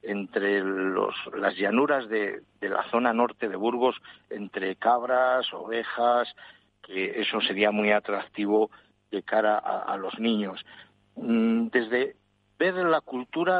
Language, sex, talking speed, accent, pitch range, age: Spanish, male, 130 wpm, Spanish, 110-135 Hz, 60-79